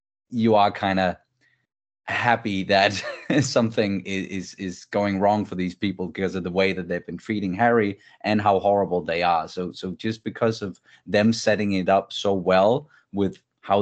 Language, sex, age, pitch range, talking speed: English, male, 20-39, 90-105 Hz, 180 wpm